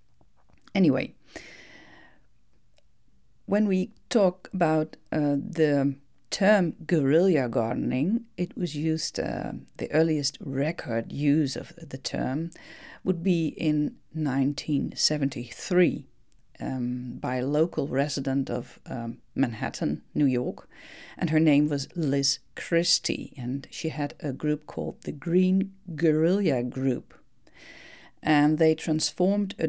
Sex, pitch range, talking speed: female, 135-170 Hz, 110 wpm